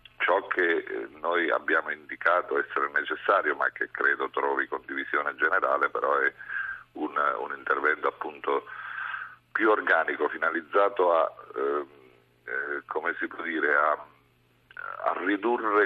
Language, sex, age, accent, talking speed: Italian, male, 50-69, native, 115 wpm